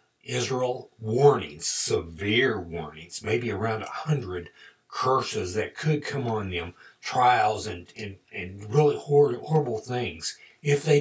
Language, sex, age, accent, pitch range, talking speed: English, male, 60-79, American, 105-145 Hz, 130 wpm